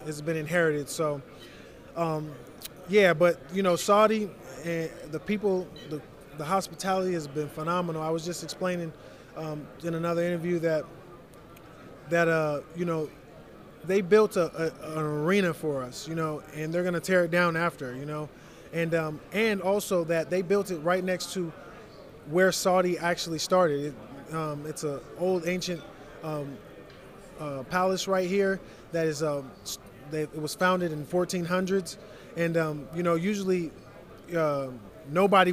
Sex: male